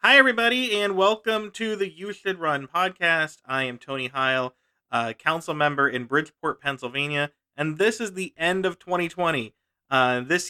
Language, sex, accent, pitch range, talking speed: English, male, American, 125-170 Hz, 165 wpm